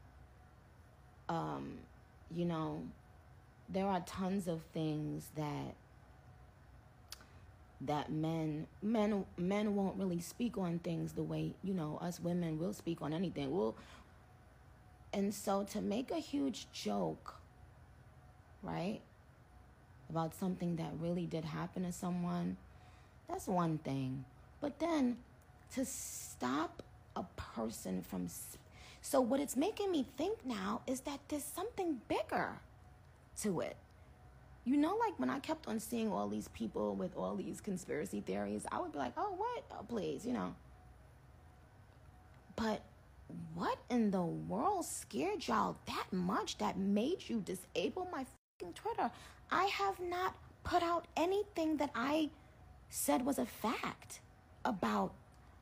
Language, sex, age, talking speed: English, female, 30-49, 130 wpm